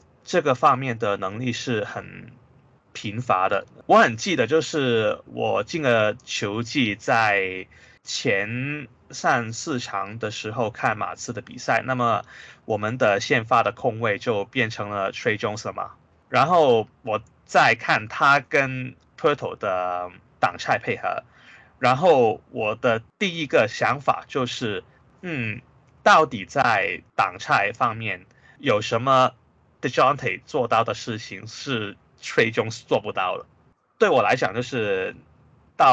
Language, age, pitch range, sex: Chinese, 20-39, 100-130 Hz, male